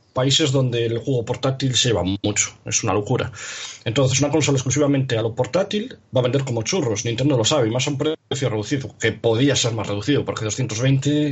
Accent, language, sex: Spanish, Spanish, male